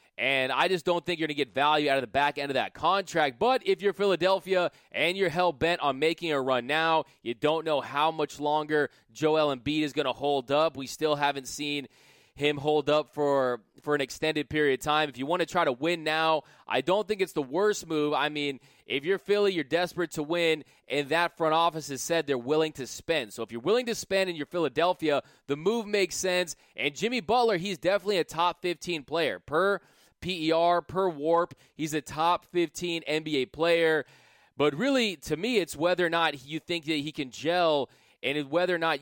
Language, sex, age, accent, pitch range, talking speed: English, male, 20-39, American, 145-175 Hz, 215 wpm